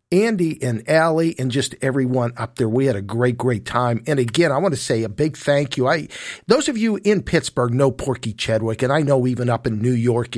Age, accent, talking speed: 50-69, American, 235 wpm